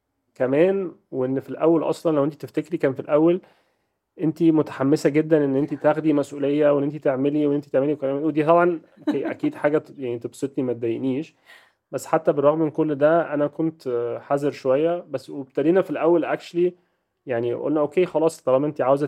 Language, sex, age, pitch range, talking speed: Arabic, male, 30-49, 130-155 Hz, 175 wpm